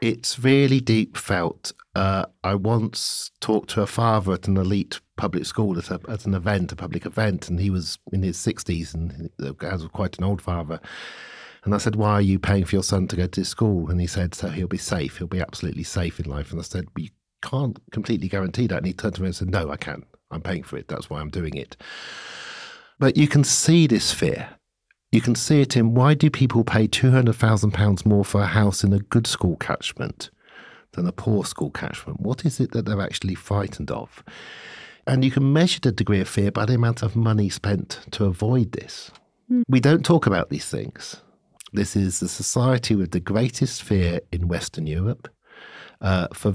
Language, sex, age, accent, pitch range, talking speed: English, male, 50-69, British, 90-115 Hz, 215 wpm